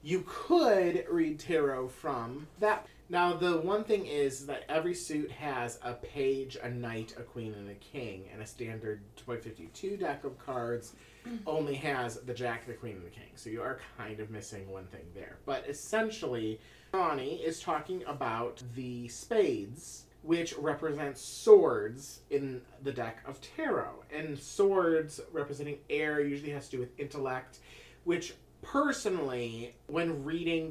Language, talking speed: English, 155 wpm